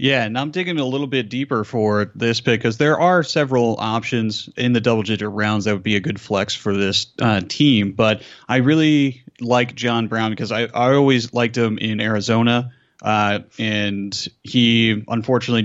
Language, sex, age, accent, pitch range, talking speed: English, male, 30-49, American, 105-125 Hz, 185 wpm